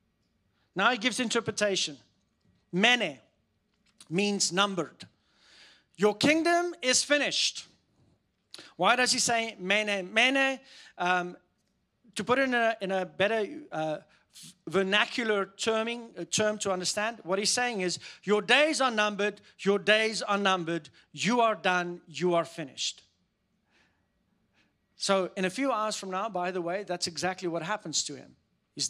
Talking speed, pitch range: 140 wpm, 180-245 Hz